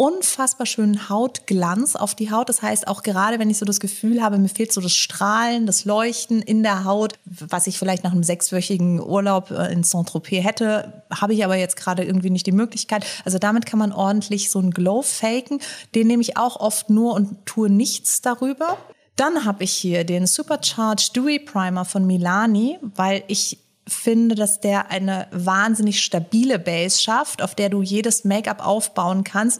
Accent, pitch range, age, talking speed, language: German, 185-220 Hz, 30-49, 185 wpm, German